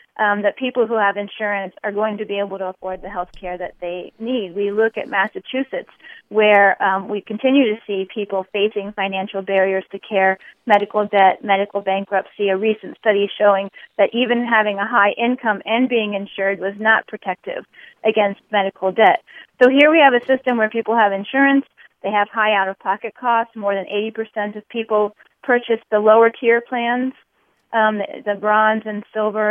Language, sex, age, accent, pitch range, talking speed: English, female, 40-59, American, 200-235 Hz, 175 wpm